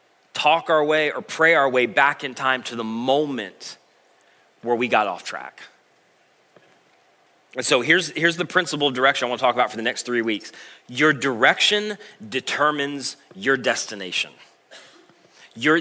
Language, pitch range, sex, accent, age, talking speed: English, 145-185 Hz, male, American, 30-49, 160 wpm